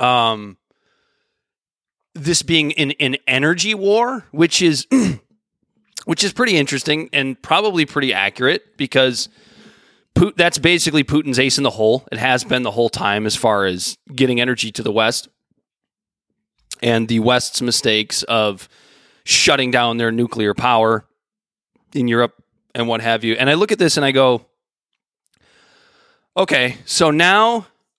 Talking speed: 145 wpm